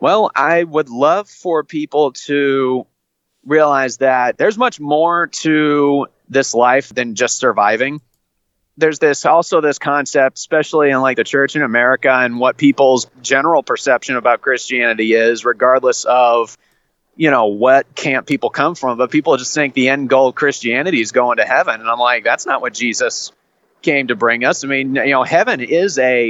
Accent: American